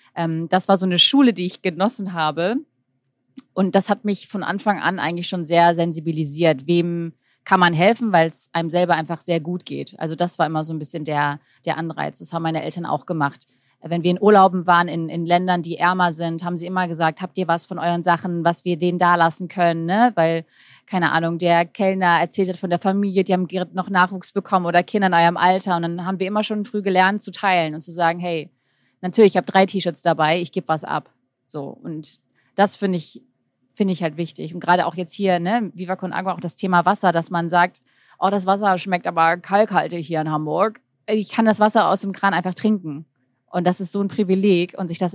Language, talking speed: German, 225 wpm